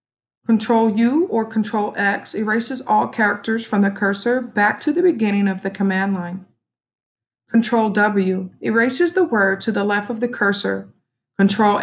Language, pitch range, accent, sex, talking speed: English, 190-235 Hz, American, female, 155 wpm